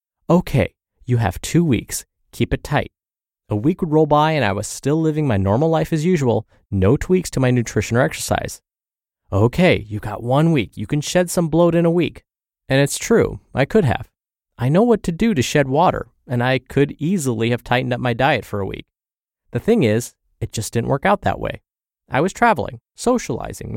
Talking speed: 210 wpm